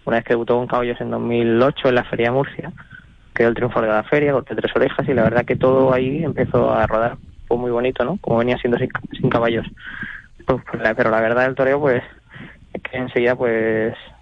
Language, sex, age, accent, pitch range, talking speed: Spanish, male, 20-39, Spanish, 115-135 Hz, 230 wpm